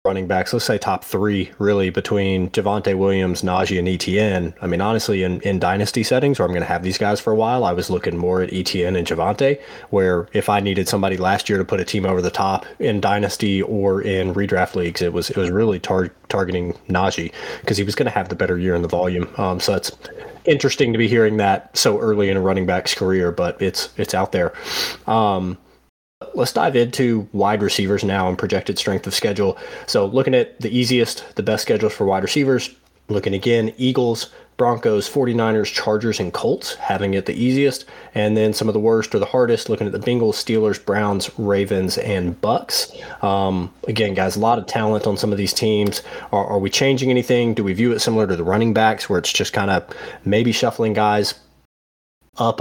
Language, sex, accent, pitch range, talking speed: English, male, American, 95-110 Hz, 210 wpm